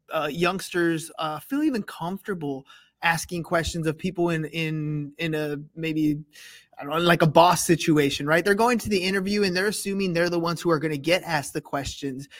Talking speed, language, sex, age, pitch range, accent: 190 wpm, English, male, 20-39, 165-210 Hz, American